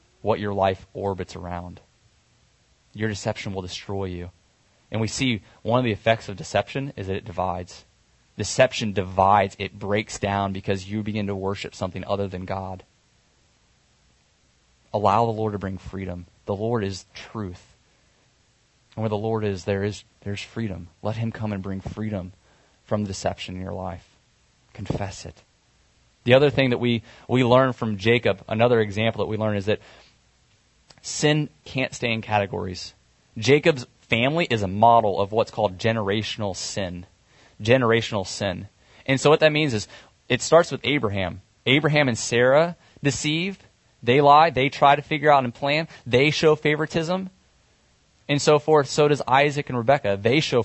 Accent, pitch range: American, 100-130 Hz